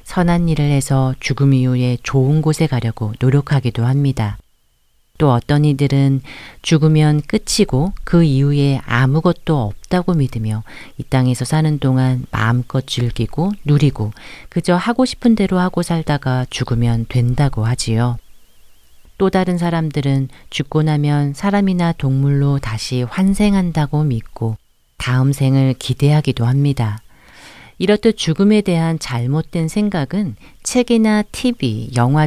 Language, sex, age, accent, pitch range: Korean, female, 40-59, native, 120-160 Hz